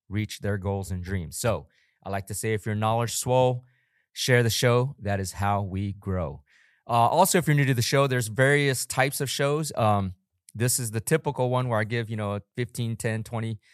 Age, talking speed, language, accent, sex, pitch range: 30-49, 220 wpm, English, American, male, 105-125 Hz